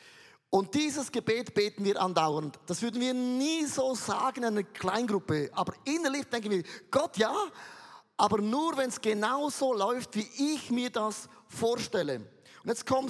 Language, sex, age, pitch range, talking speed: German, male, 30-49, 175-235 Hz, 165 wpm